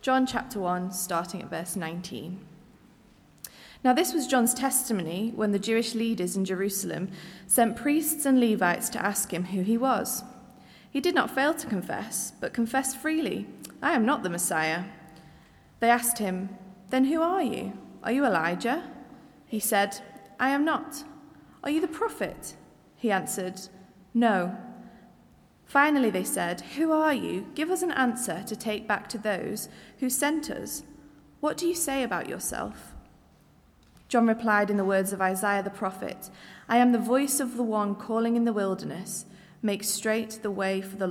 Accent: British